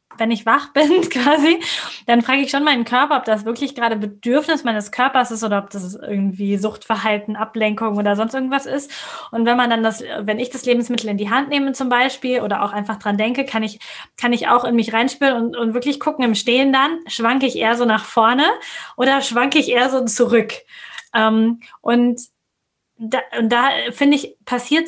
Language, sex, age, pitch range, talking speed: German, female, 20-39, 225-275 Hz, 205 wpm